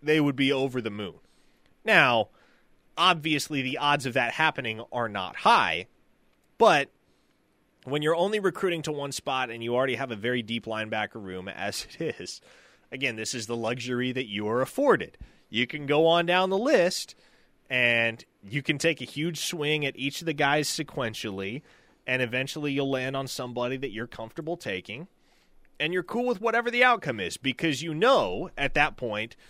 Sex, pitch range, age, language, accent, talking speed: male, 115-150 Hz, 20-39, English, American, 180 wpm